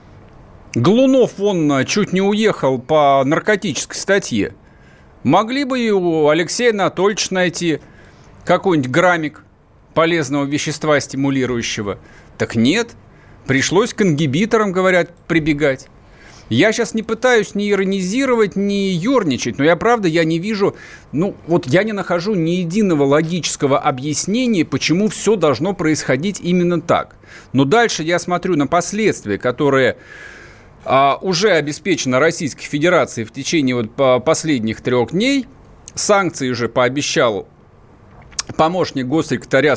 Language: Russian